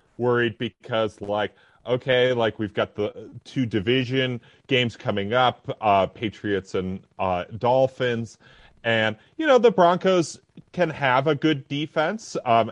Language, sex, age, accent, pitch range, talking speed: English, male, 30-49, American, 105-135 Hz, 135 wpm